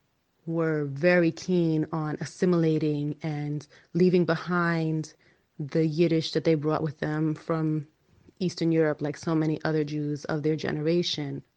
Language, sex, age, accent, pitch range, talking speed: English, female, 30-49, American, 150-175 Hz, 135 wpm